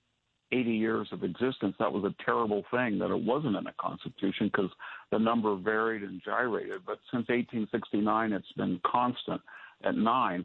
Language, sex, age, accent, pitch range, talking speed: English, male, 60-79, American, 105-120 Hz, 165 wpm